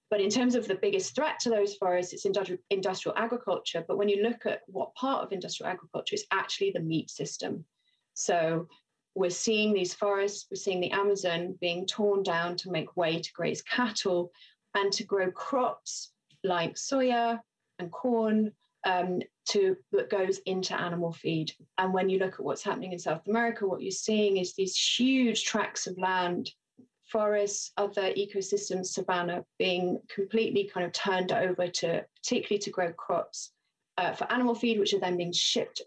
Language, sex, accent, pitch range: English, female, British, 180-230 Hz